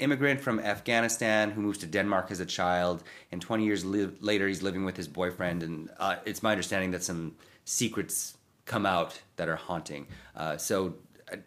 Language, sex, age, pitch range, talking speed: English, male, 30-49, 90-110 Hz, 185 wpm